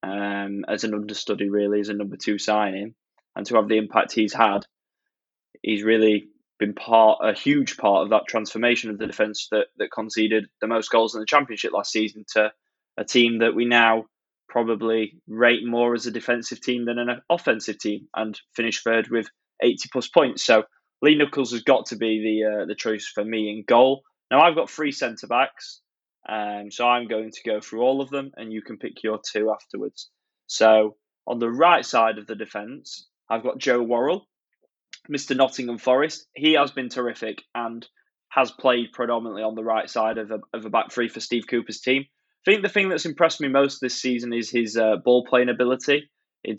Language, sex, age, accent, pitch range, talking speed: English, male, 10-29, British, 110-125 Hz, 200 wpm